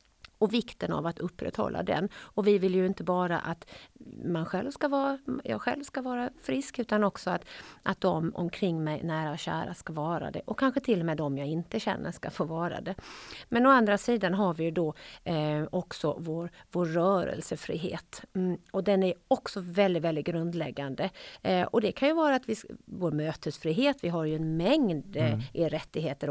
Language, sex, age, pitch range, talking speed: Swedish, female, 40-59, 160-225 Hz, 195 wpm